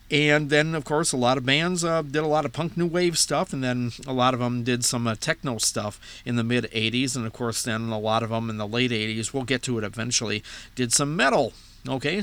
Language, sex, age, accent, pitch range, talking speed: English, male, 50-69, American, 110-145 Hz, 260 wpm